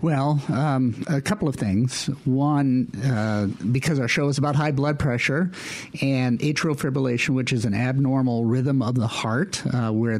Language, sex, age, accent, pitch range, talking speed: English, male, 50-69, American, 115-145 Hz, 170 wpm